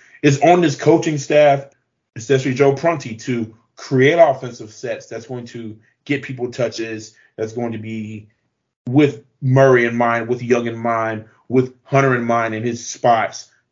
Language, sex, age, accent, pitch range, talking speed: English, male, 30-49, American, 110-130 Hz, 160 wpm